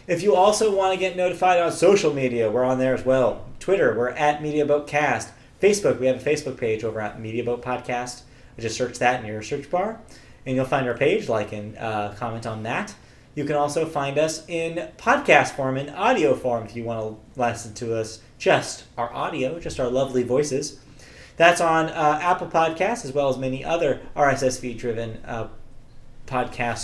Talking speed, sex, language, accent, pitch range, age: 200 wpm, male, English, American, 120-160 Hz, 30-49